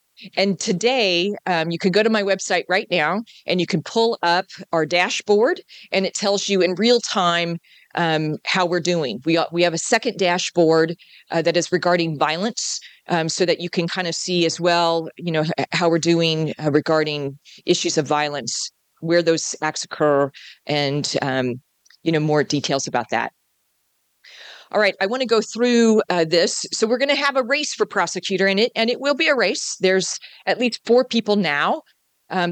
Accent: American